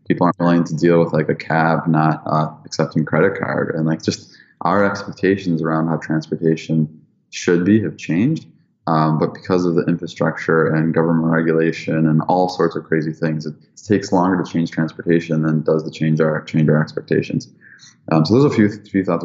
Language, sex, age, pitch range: English, male, 20-39, 80-90 Hz